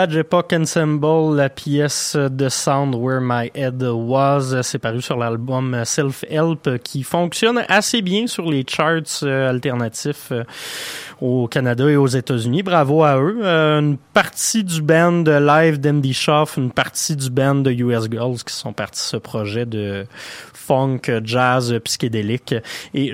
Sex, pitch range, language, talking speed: male, 120-150 Hz, French, 155 wpm